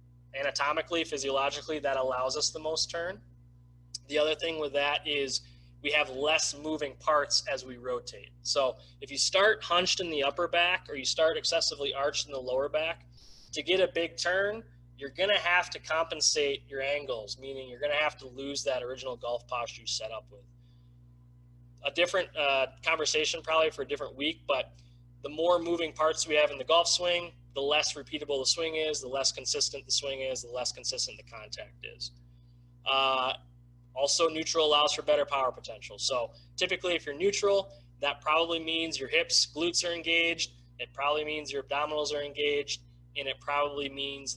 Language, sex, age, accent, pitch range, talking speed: English, male, 20-39, American, 120-155 Hz, 185 wpm